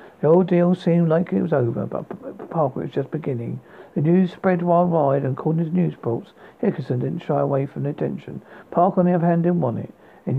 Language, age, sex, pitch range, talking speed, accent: English, 60-79, male, 145-180 Hz, 225 wpm, British